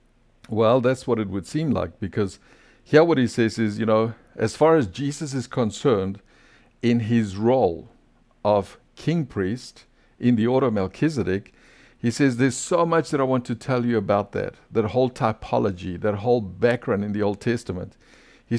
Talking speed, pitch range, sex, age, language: 180 wpm, 105-130 Hz, male, 50-69, English